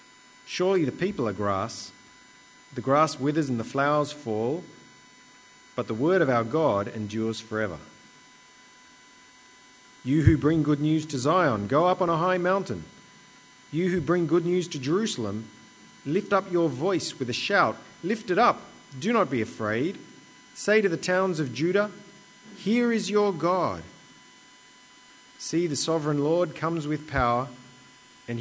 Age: 40-59